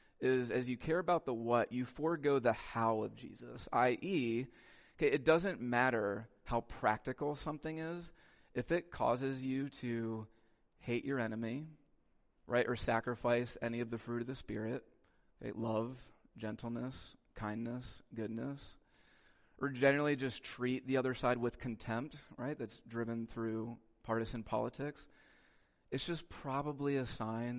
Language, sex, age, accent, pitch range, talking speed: English, male, 30-49, American, 110-130 Hz, 135 wpm